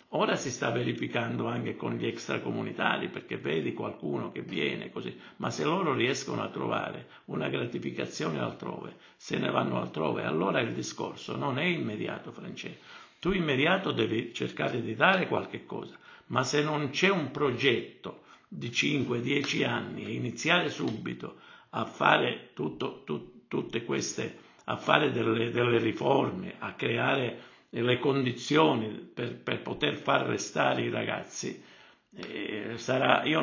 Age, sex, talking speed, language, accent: 60-79, male, 140 wpm, Italian, native